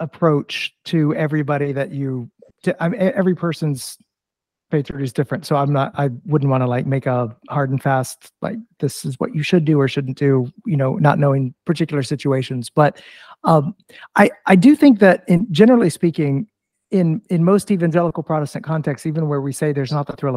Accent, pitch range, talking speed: American, 140-175 Hz, 195 wpm